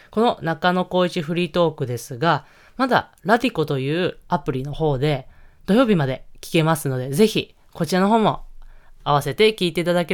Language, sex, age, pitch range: Japanese, female, 20-39, 140-205 Hz